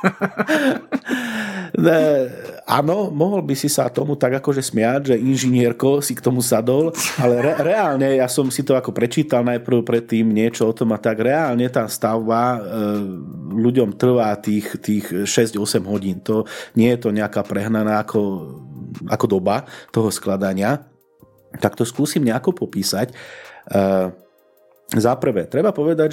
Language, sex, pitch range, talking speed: Slovak, male, 110-145 Hz, 140 wpm